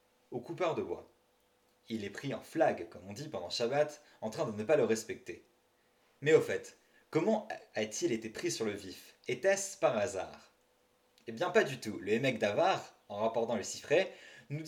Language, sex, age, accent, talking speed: French, male, 30-49, French, 190 wpm